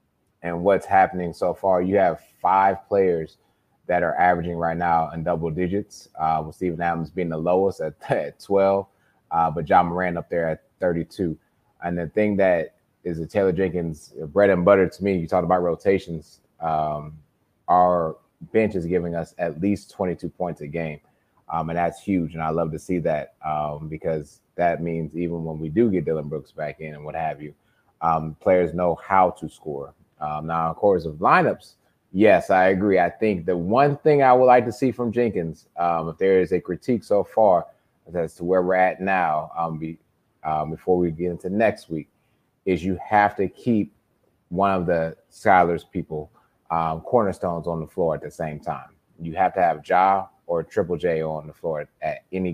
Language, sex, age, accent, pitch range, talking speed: English, male, 30-49, American, 80-95 Hz, 200 wpm